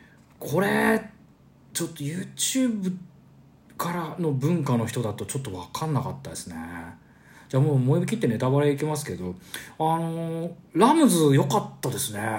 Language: Japanese